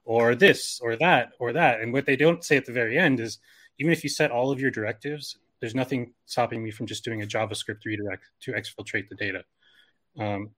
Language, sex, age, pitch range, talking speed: English, male, 20-39, 105-130 Hz, 220 wpm